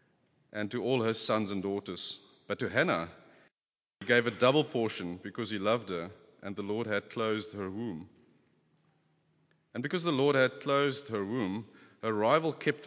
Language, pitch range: English, 105-135 Hz